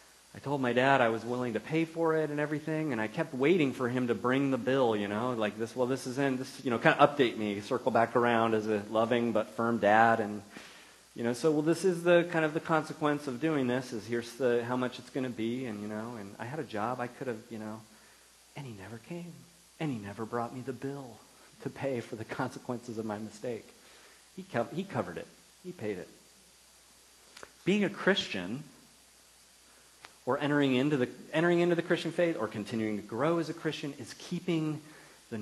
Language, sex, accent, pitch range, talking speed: English, male, American, 105-140 Hz, 225 wpm